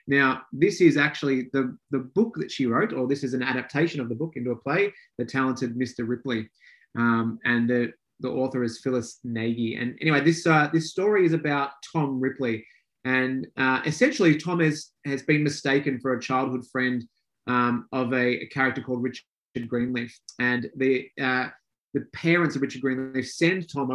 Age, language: 30-49, English